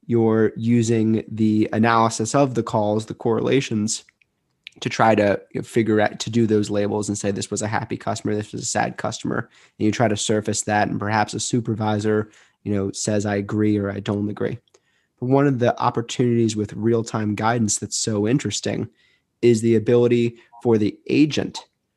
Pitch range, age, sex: 105-120 Hz, 20-39, male